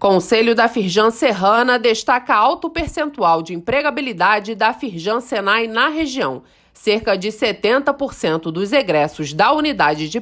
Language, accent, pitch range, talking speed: Portuguese, Brazilian, 195-280 Hz, 130 wpm